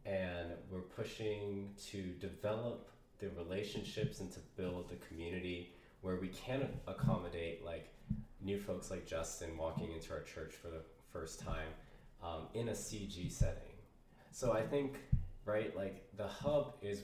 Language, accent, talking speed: English, American, 150 wpm